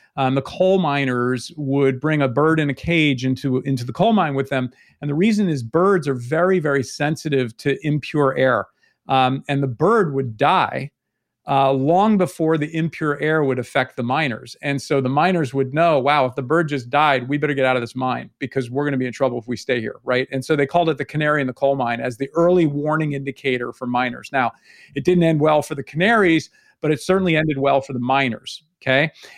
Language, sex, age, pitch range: English, male, 40-59, 135-180 Hz